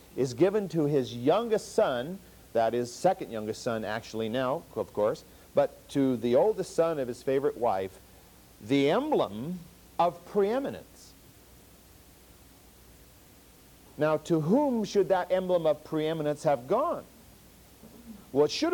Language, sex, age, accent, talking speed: English, male, 50-69, American, 130 wpm